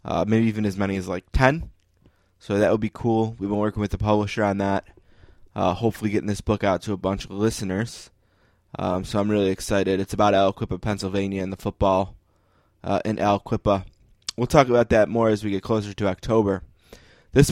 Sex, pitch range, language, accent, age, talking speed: male, 95-110 Hz, English, American, 20-39, 200 wpm